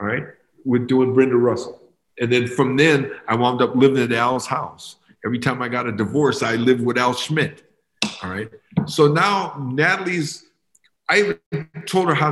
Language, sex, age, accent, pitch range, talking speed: English, male, 50-69, American, 115-150 Hz, 185 wpm